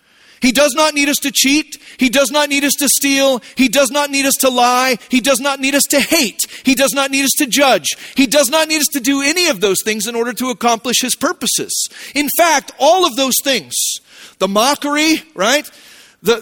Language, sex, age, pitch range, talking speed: English, male, 40-59, 245-295 Hz, 225 wpm